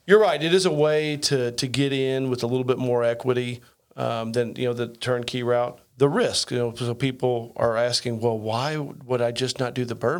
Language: English